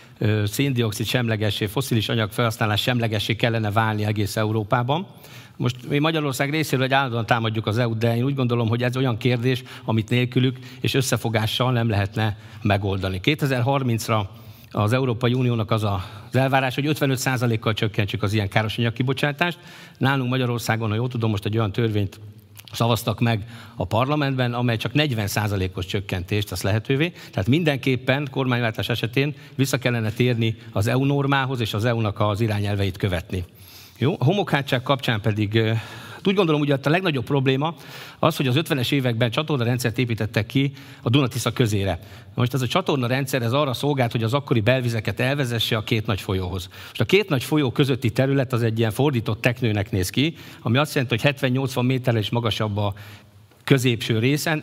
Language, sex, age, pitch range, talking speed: Hungarian, male, 50-69, 110-135 Hz, 160 wpm